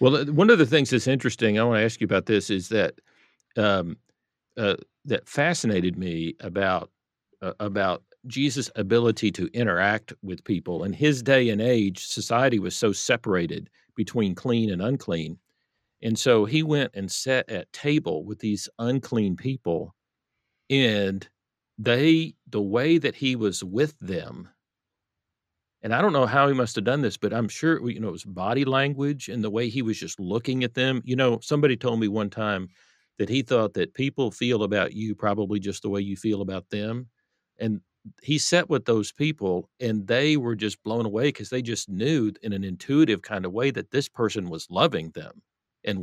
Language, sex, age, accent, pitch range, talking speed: English, male, 50-69, American, 105-135 Hz, 190 wpm